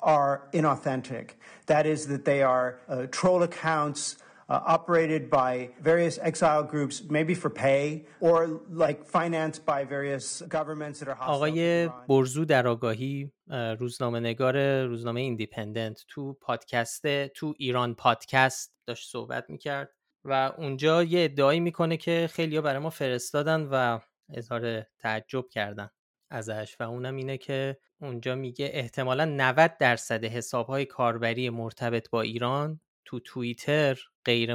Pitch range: 120-155 Hz